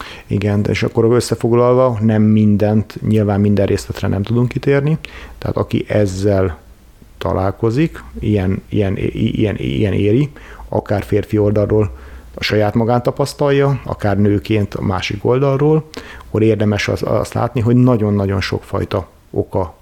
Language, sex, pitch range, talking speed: Hungarian, male, 100-120 Hz, 130 wpm